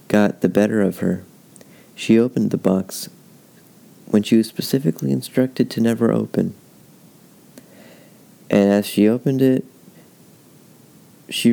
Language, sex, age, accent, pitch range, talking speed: English, male, 30-49, American, 95-110 Hz, 120 wpm